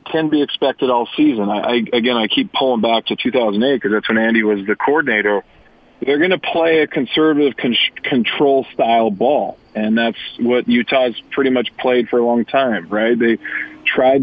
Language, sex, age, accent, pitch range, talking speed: English, male, 40-59, American, 115-140 Hz, 185 wpm